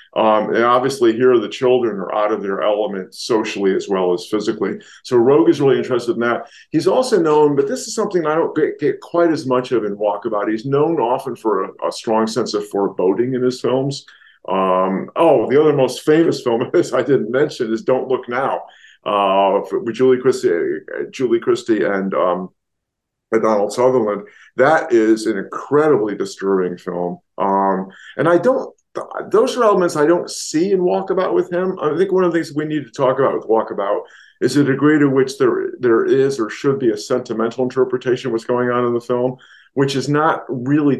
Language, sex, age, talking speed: English, male, 50-69, 200 wpm